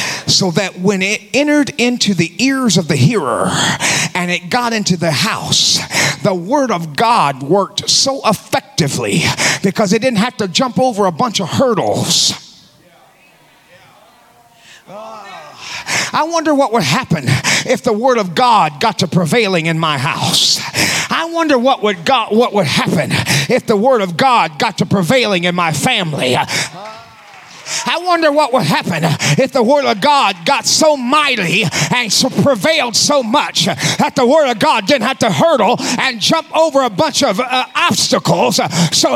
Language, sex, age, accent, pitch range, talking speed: English, male, 40-59, American, 205-305 Hz, 160 wpm